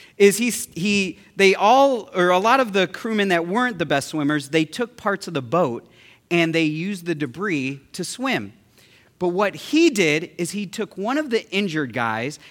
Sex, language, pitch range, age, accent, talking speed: male, English, 150-225 Hz, 40-59, American, 195 wpm